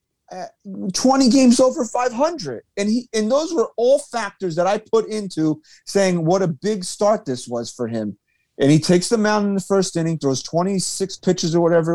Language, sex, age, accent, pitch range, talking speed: English, male, 30-49, American, 140-190 Hz, 190 wpm